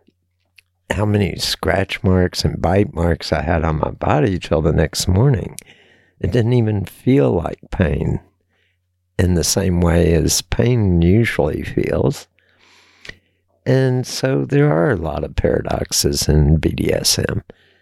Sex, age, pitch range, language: male, 60-79, 85-110 Hz, English